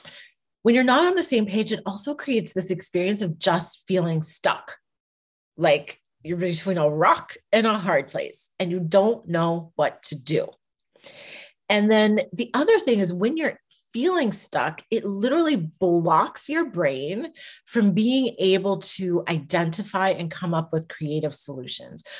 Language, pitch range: English, 170-235 Hz